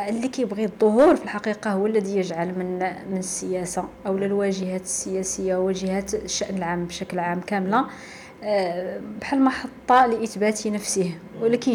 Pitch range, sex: 190-235 Hz, female